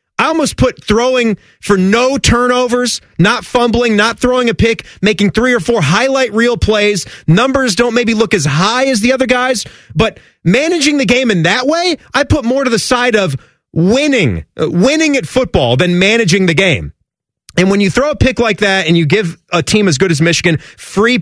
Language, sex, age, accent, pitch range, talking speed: English, male, 30-49, American, 180-255 Hz, 200 wpm